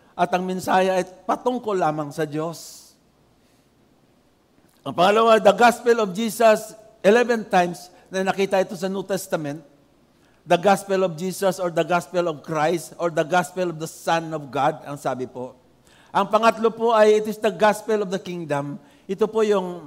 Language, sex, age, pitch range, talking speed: English, male, 50-69, 170-215 Hz, 170 wpm